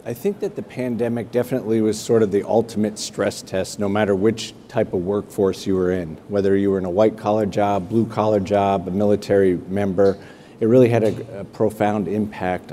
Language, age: English, 50-69